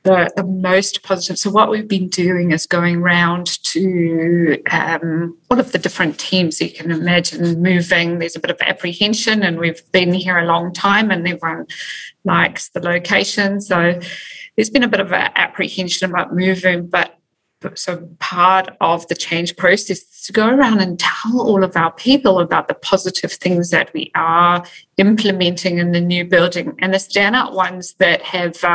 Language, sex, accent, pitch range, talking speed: English, female, British, 175-195 Hz, 175 wpm